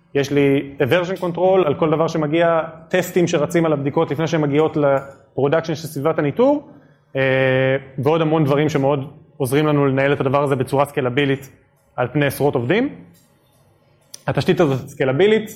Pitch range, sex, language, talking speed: 135-170 Hz, male, Hebrew, 150 wpm